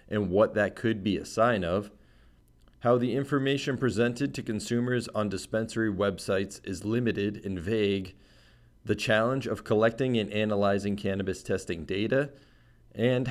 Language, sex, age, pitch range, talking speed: English, male, 40-59, 95-115 Hz, 140 wpm